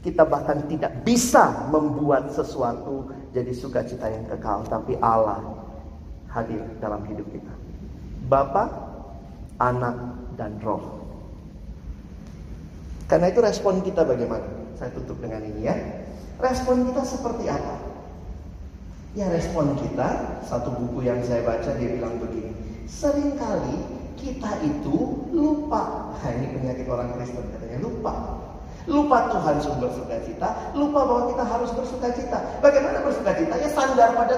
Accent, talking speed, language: native, 120 wpm, Indonesian